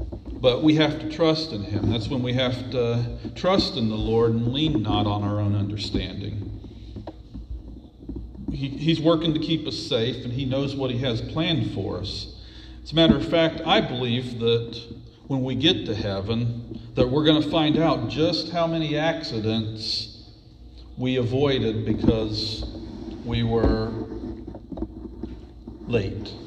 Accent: American